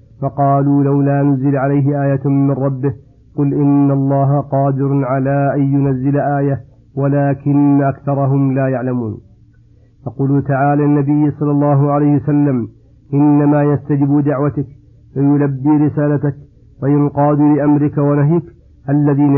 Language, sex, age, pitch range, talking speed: Arabic, male, 50-69, 135-145 Hz, 110 wpm